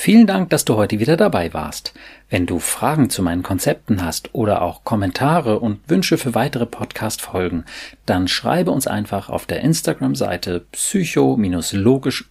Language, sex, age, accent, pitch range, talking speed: German, male, 40-59, German, 90-135 Hz, 160 wpm